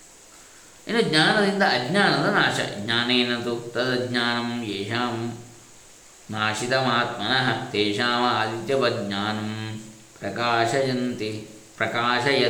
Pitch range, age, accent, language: 115-150 Hz, 20-39, native, Kannada